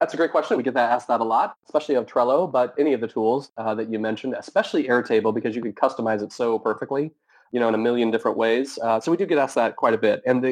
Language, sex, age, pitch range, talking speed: English, male, 30-49, 110-135 Hz, 285 wpm